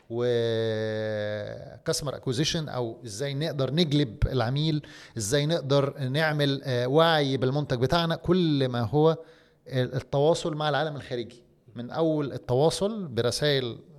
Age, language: 30-49, Arabic